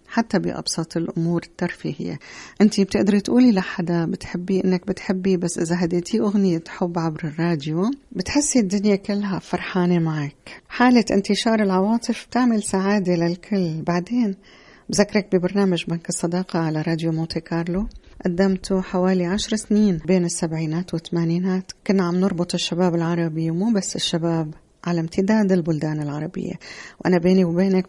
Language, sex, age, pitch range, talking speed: Arabic, female, 40-59, 165-195 Hz, 130 wpm